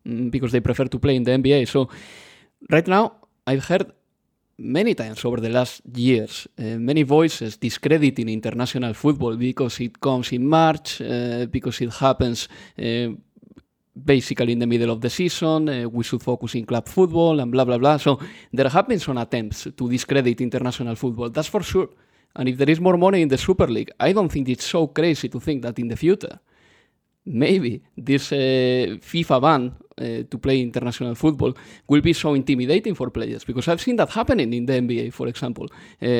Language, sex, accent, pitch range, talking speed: English, male, Spanish, 120-150 Hz, 190 wpm